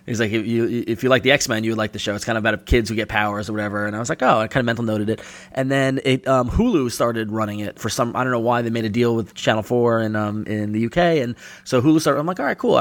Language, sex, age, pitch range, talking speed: English, male, 20-39, 110-130 Hz, 335 wpm